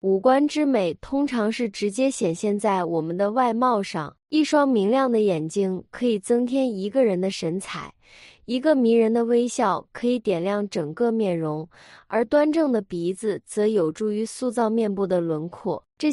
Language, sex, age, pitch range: Chinese, female, 20-39, 190-250 Hz